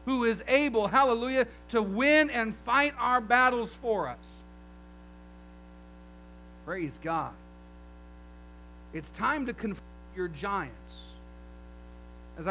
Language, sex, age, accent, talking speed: English, male, 50-69, American, 100 wpm